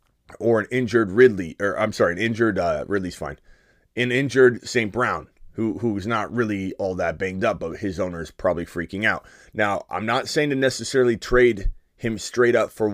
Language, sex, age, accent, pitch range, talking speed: English, male, 30-49, American, 90-115 Hz, 195 wpm